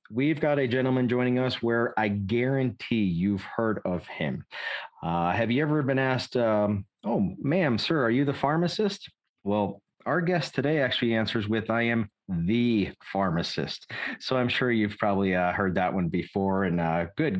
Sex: male